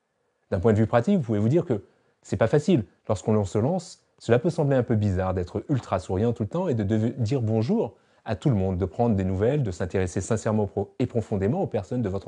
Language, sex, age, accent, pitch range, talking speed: French, male, 30-49, French, 100-135 Hz, 245 wpm